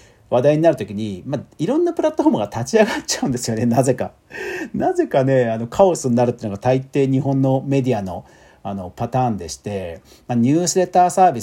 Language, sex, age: Japanese, male, 50-69